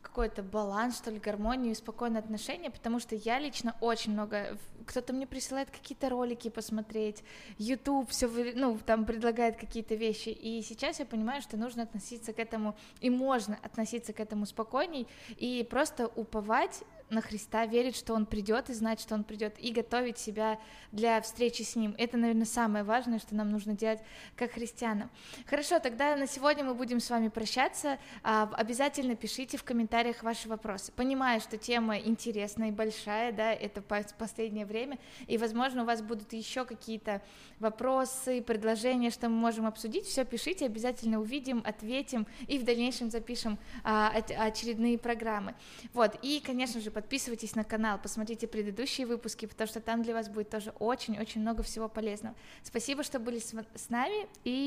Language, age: Russian, 20-39